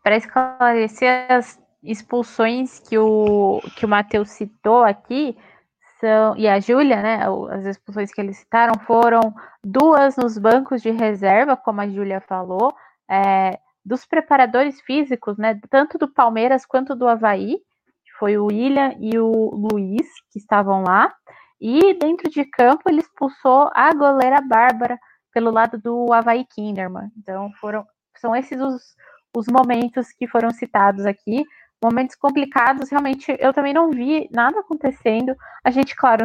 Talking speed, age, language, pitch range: 145 wpm, 20-39, Portuguese, 215-270 Hz